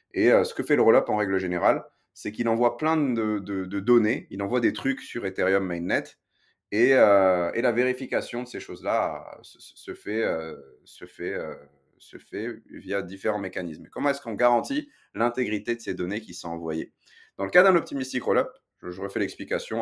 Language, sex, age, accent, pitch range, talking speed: French, male, 30-49, French, 95-120 Hz, 195 wpm